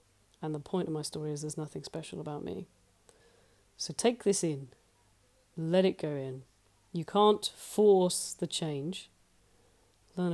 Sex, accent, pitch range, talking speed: female, British, 125-175 Hz, 150 wpm